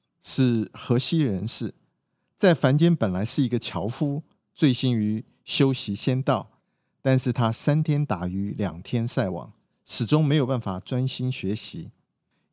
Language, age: Chinese, 50-69